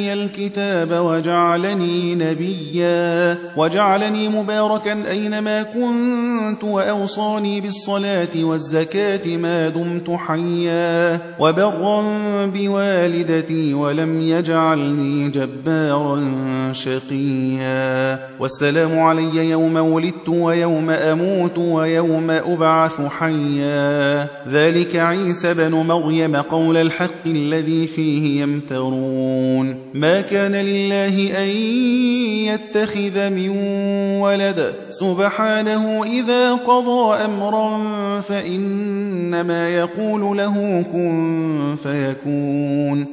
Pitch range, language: 160-200 Hz, Arabic